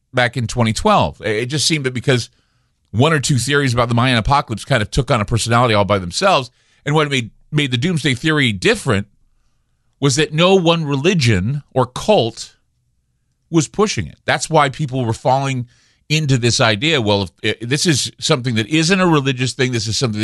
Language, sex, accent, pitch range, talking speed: English, male, American, 110-145 Hz, 185 wpm